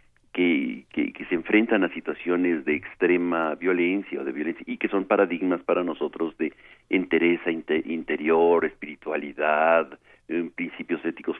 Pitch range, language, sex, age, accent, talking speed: 85-115 Hz, Spanish, male, 50-69, Mexican, 140 wpm